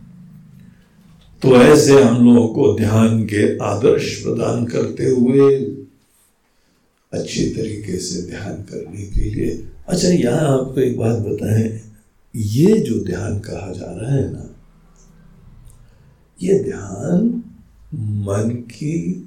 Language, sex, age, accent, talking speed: Hindi, male, 60-79, native, 110 wpm